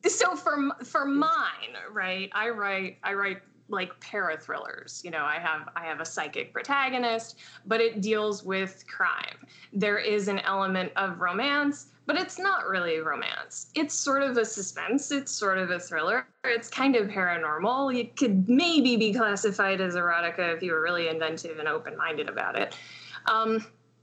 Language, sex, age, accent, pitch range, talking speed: English, female, 20-39, American, 190-245 Hz, 165 wpm